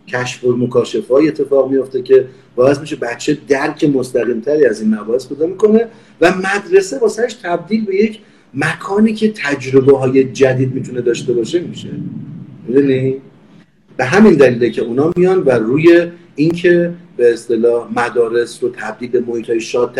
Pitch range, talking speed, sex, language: 130-185 Hz, 150 wpm, male, Persian